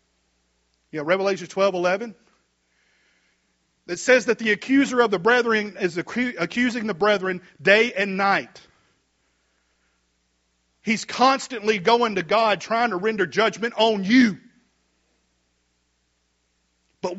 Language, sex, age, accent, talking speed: English, male, 50-69, American, 110 wpm